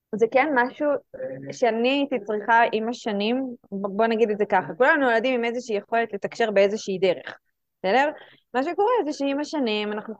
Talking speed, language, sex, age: 165 wpm, Hebrew, female, 20-39